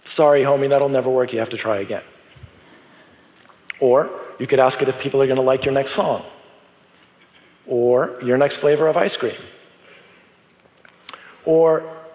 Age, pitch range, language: 40-59, 115-145 Hz, Japanese